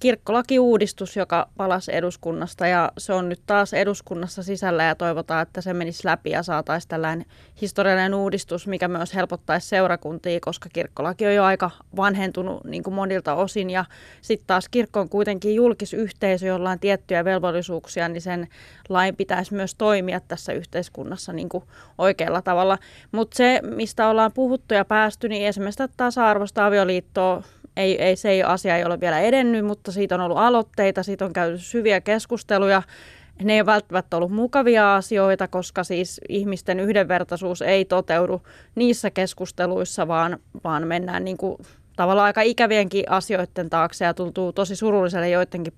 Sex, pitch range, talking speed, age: female, 175-205 Hz, 155 wpm, 20-39